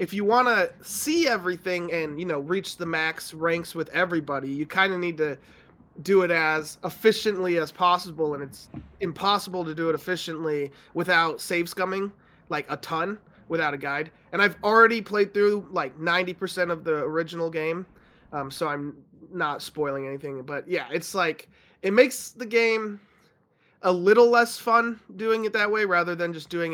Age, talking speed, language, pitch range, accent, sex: 20-39, 175 wpm, English, 150-190 Hz, American, male